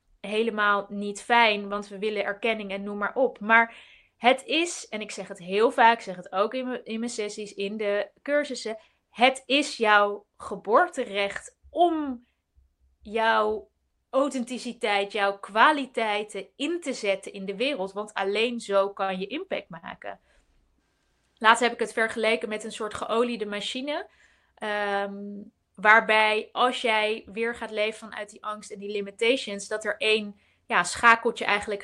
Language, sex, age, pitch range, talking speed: Dutch, female, 20-39, 200-240 Hz, 155 wpm